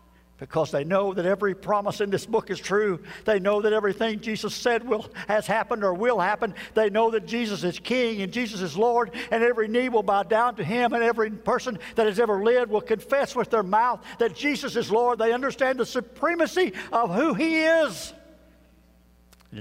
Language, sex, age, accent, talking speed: English, male, 60-79, American, 200 wpm